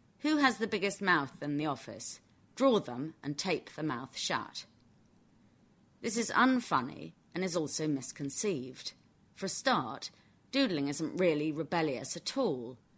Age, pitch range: 30-49, 135-180 Hz